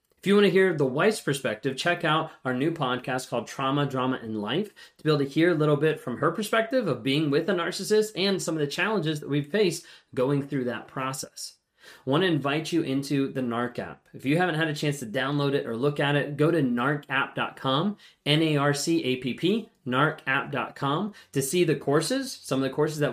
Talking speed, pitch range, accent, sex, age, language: 215 wpm, 135-175 Hz, American, male, 20-39, English